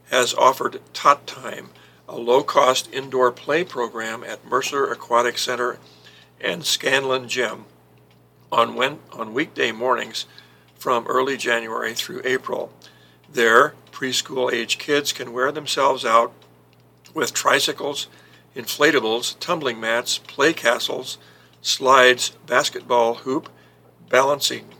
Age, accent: 60-79, American